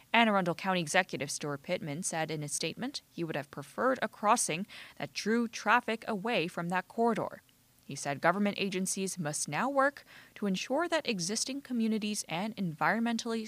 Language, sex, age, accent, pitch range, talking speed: English, female, 20-39, American, 155-215 Hz, 165 wpm